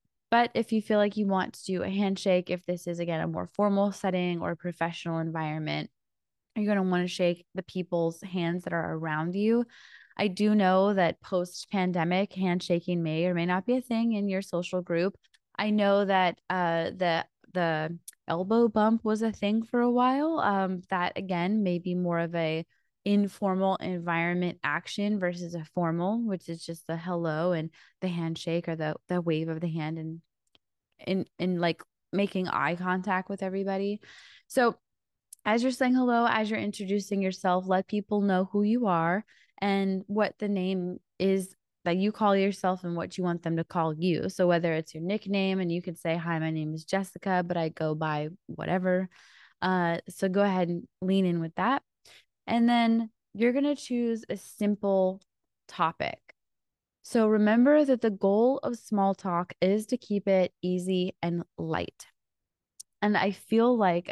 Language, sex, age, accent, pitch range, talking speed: English, female, 20-39, American, 170-205 Hz, 180 wpm